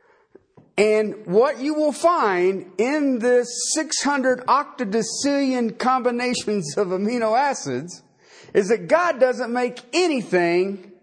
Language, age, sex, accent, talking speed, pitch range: English, 40-59, male, American, 105 wpm, 165-270 Hz